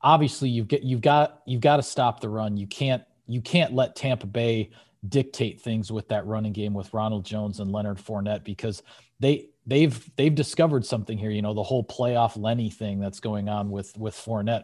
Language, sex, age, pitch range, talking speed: English, male, 40-59, 110-135 Hz, 205 wpm